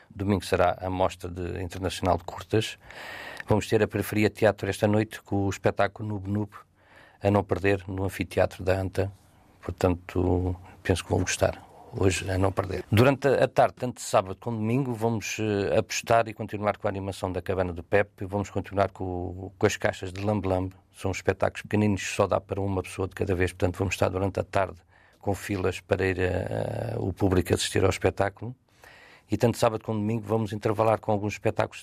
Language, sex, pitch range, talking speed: Portuguese, male, 95-105 Hz, 195 wpm